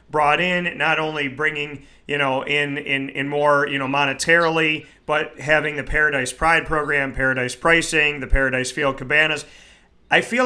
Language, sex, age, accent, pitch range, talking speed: English, male, 30-49, American, 140-165 Hz, 160 wpm